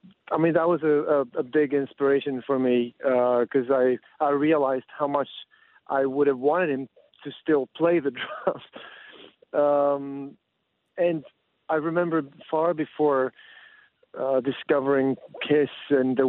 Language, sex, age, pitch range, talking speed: Russian, male, 40-59, 130-150 Hz, 145 wpm